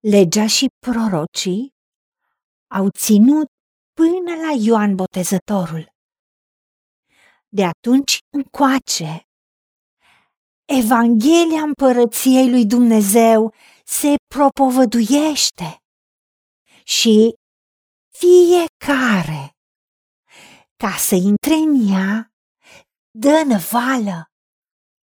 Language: Romanian